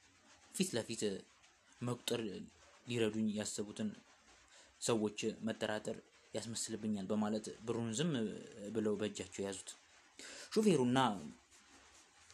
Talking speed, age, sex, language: 65 wpm, 20-39, male, Amharic